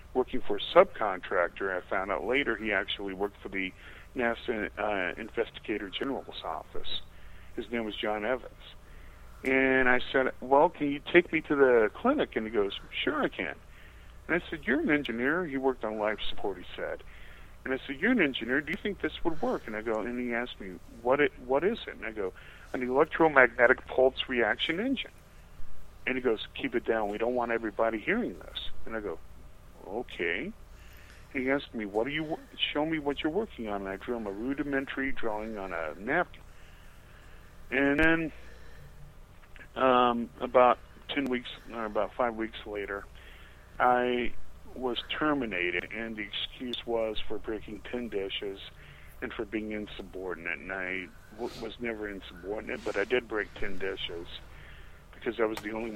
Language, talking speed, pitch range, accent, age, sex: English, 180 wpm, 95-130 Hz, American, 40-59, male